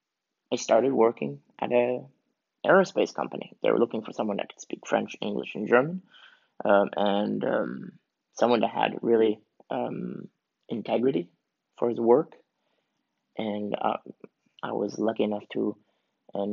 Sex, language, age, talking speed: male, English, 20-39, 140 wpm